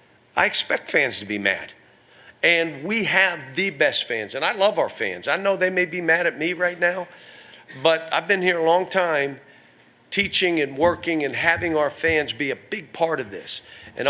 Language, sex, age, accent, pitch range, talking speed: English, male, 40-59, American, 135-165 Hz, 205 wpm